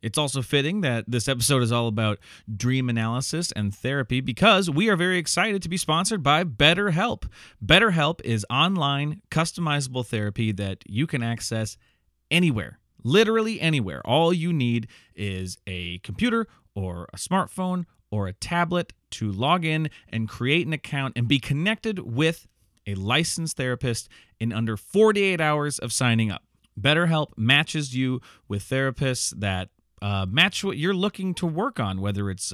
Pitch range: 110-175 Hz